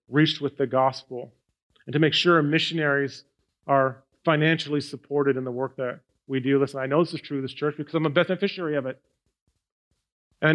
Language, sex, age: English, male, 40-59